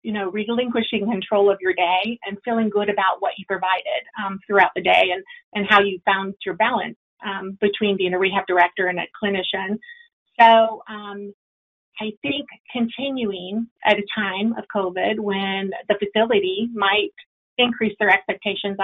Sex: female